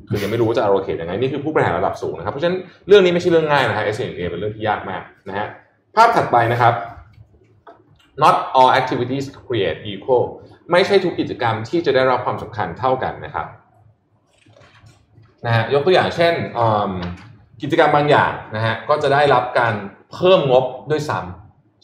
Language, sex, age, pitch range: Thai, male, 20-39, 105-140 Hz